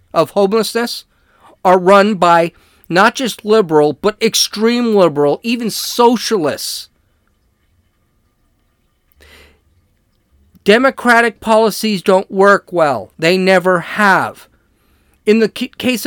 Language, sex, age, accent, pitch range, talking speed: English, male, 40-59, American, 190-235 Hz, 90 wpm